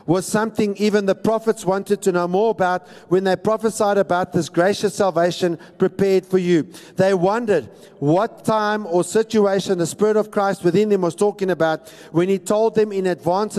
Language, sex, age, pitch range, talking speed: English, male, 50-69, 185-230 Hz, 180 wpm